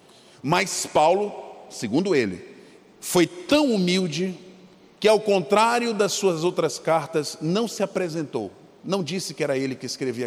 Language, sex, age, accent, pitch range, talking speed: Portuguese, male, 40-59, Brazilian, 155-240 Hz, 140 wpm